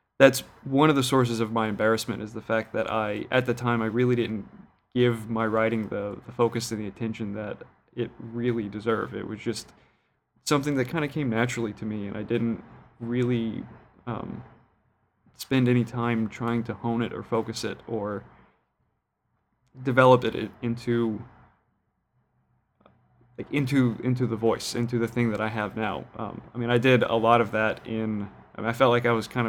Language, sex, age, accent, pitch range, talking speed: English, male, 20-39, American, 110-120 Hz, 180 wpm